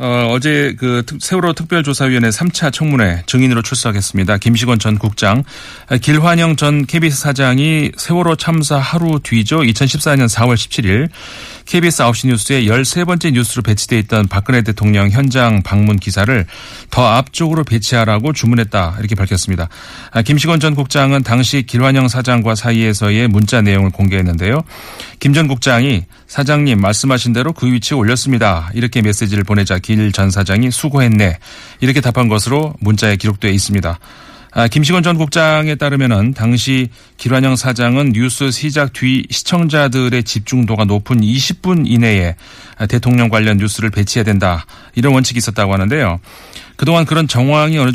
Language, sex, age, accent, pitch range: Korean, male, 40-59, native, 110-140 Hz